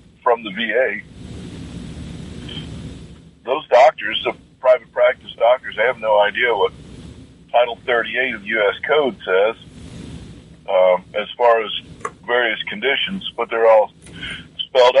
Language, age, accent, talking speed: English, 50-69, American, 130 wpm